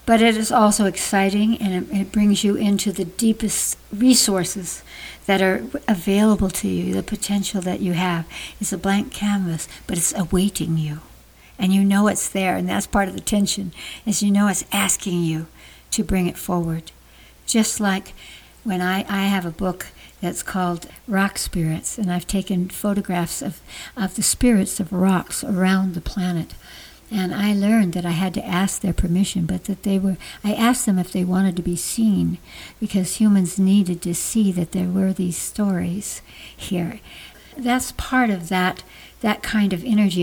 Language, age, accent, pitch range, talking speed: English, 60-79, American, 180-210 Hz, 180 wpm